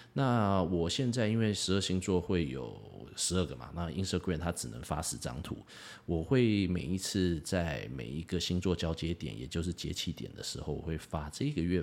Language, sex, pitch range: Chinese, male, 80-95 Hz